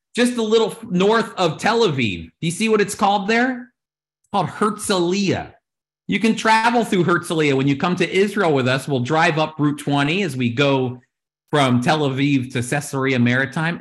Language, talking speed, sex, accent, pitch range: English, 185 wpm, male, American, 145-205 Hz